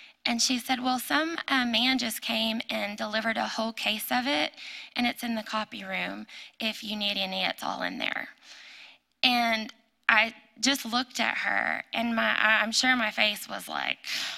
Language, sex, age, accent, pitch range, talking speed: English, female, 10-29, American, 225-250 Hz, 180 wpm